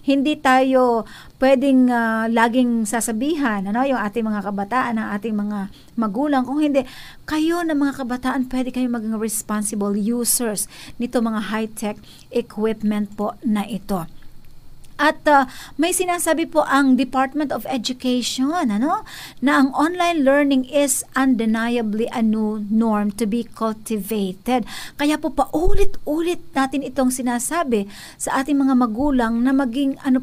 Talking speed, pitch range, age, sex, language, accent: 135 wpm, 225-280 Hz, 50-69, female, Filipino, native